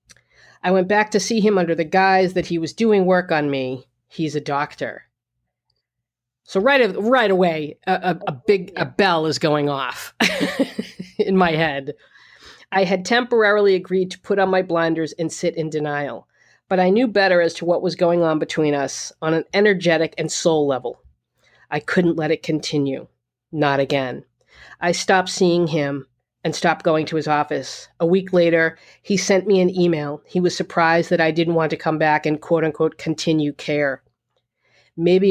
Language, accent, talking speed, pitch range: English, American, 180 wpm, 150-185 Hz